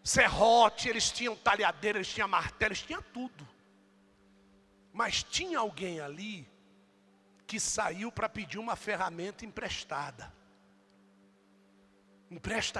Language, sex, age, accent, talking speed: Portuguese, male, 60-79, Brazilian, 105 wpm